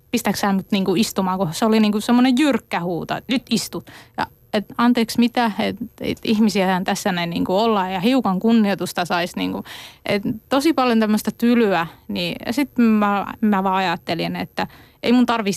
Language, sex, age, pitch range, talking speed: Finnish, female, 20-39, 190-230 Hz, 165 wpm